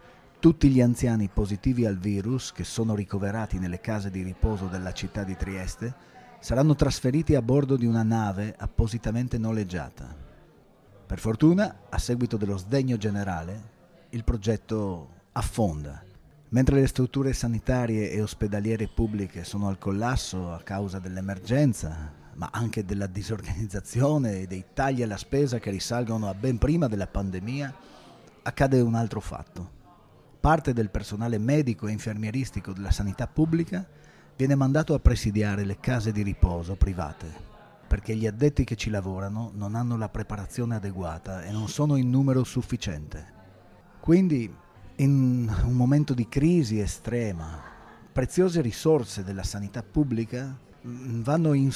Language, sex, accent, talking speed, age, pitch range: Italian, male, native, 135 wpm, 30-49, 100-130 Hz